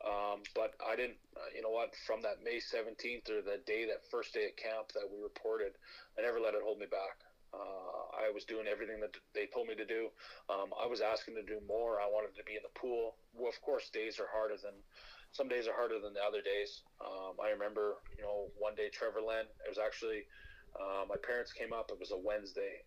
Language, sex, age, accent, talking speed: English, male, 30-49, American, 240 wpm